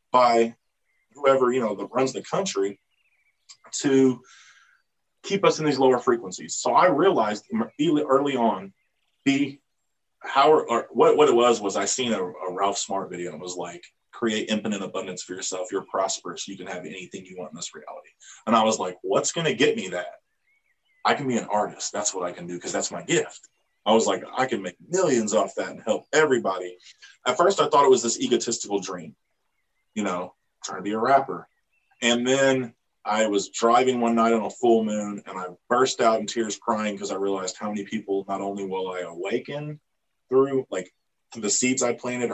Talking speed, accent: 200 wpm, American